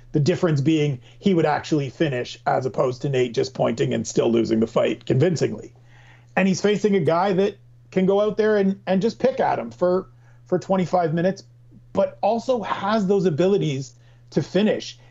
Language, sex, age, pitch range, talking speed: English, male, 40-59, 125-190 Hz, 185 wpm